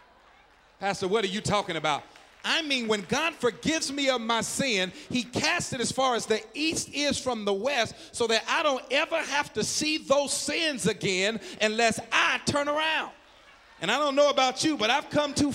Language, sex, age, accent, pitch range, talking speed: English, male, 40-59, American, 195-275 Hz, 200 wpm